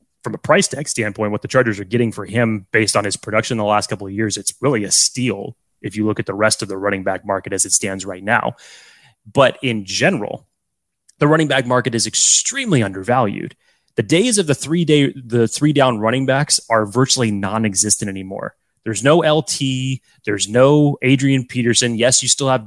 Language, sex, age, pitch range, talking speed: English, male, 20-39, 110-135 Hz, 205 wpm